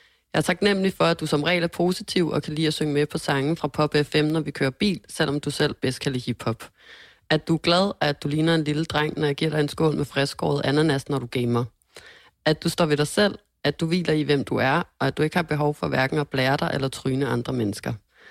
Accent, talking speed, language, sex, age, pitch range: native, 270 wpm, Danish, female, 30-49, 135-165 Hz